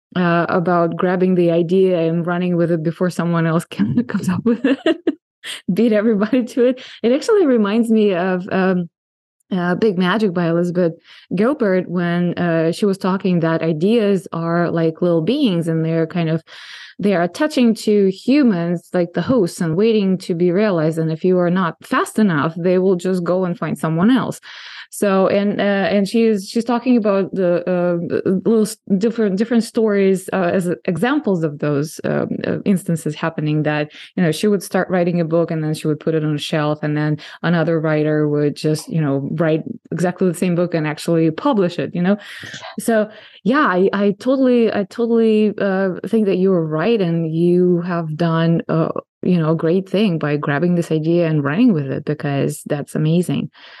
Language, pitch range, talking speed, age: English, 165-210 Hz, 190 wpm, 20-39